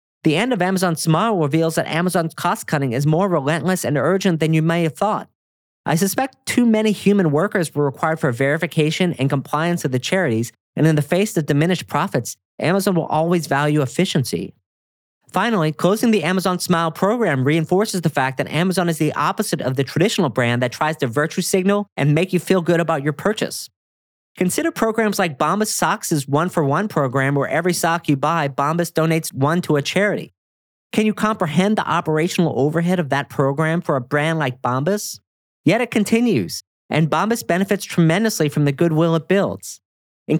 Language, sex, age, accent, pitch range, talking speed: English, male, 40-59, American, 145-185 Hz, 180 wpm